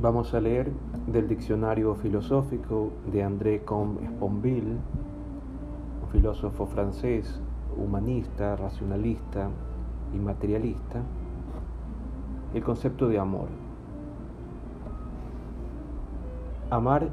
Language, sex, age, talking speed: Spanish, male, 40-59, 75 wpm